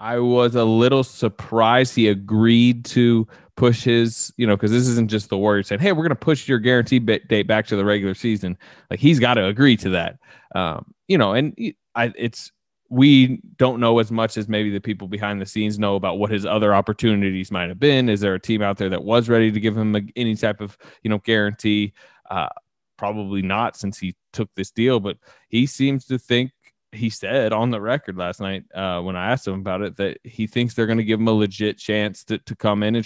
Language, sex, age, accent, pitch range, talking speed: English, male, 20-39, American, 100-120 Hz, 230 wpm